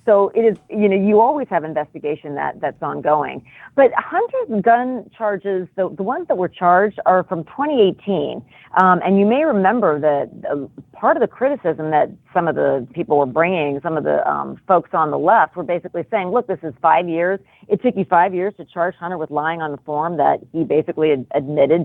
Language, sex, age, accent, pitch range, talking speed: English, female, 40-59, American, 155-210 Hz, 205 wpm